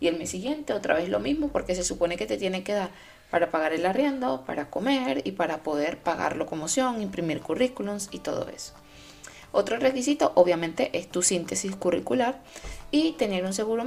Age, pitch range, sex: 20-39, 175-225 Hz, female